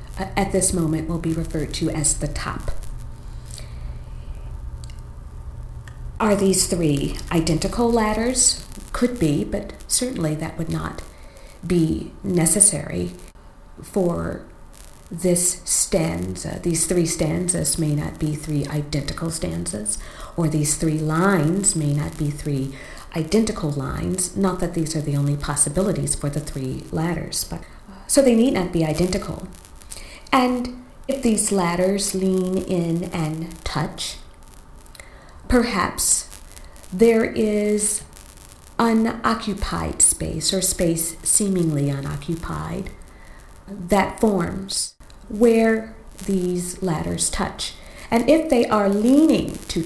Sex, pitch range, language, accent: female, 145-200 Hz, English, American